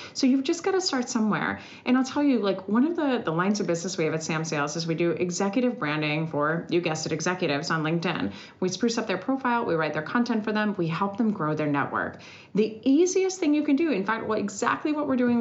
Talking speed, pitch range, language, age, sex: 255 wpm, 170-270 Hz, English, 30-49, female